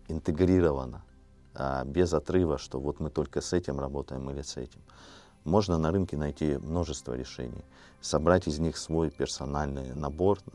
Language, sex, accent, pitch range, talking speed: Russian, male, native, 65-80 Hz, 140 wpm